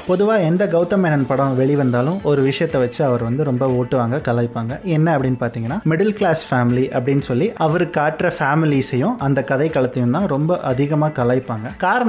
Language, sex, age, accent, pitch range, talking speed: Tamil, male, 30-49, native, 125-170 Hz, 160 wpm